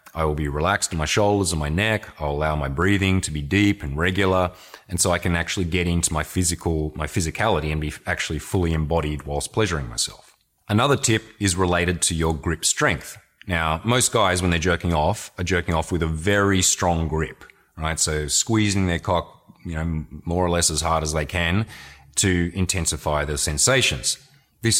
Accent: Australian